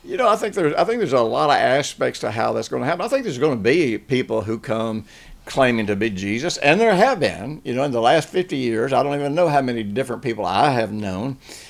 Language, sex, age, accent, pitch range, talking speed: English, male, 60-79, American, 115-150 Hz, 260 wpm